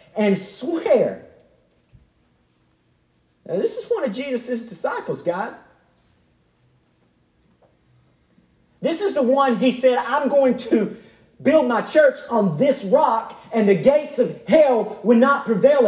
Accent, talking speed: American, 125 wpm